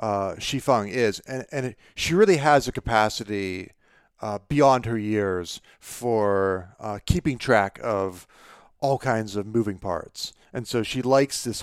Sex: male